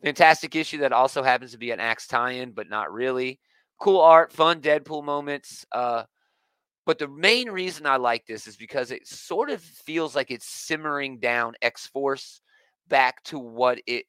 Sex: male